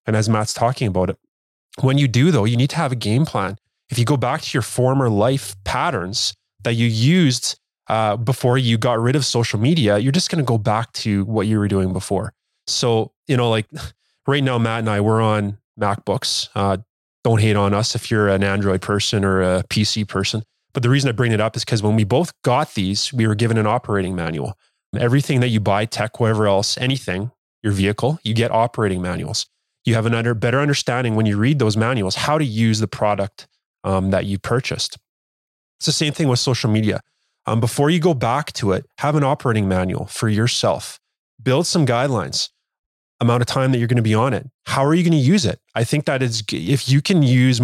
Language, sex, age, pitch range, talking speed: English, male, 20-39, 105-130 Hz, 220 wpm